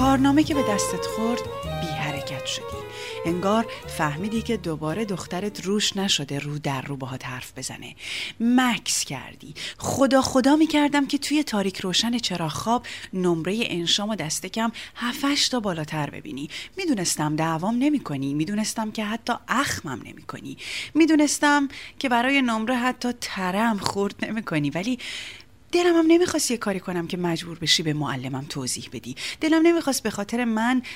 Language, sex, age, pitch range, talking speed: Persian, female, 30-49, 155-255 Hz, 150 wpm